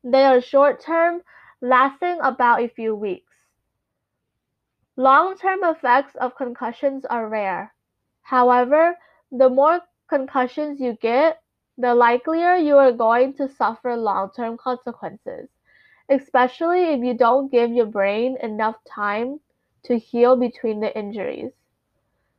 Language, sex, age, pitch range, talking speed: English, female, 10-29, 240-310 Hz, 115 wpm